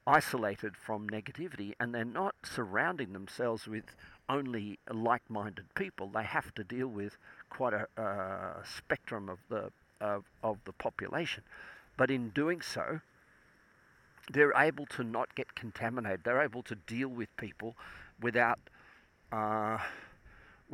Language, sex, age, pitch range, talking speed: English, male, 50-69, 105-130 Hz, 135 wpm